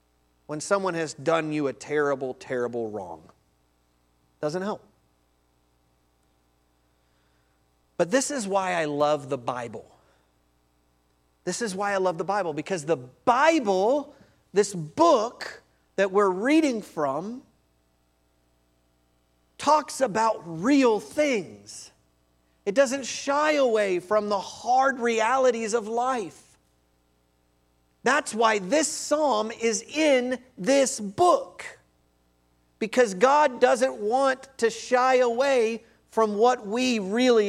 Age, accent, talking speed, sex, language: 40-59, American, 110 wpm, male, English